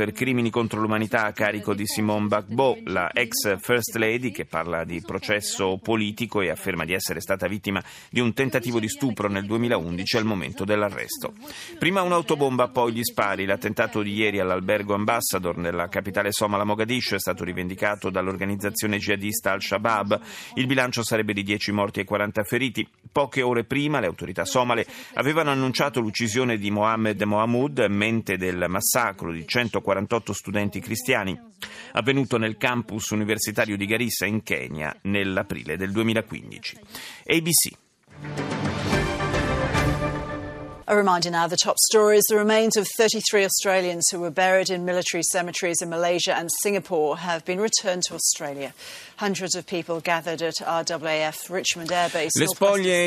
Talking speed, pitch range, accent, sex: 110 wpm, 105-145 Hz, native, male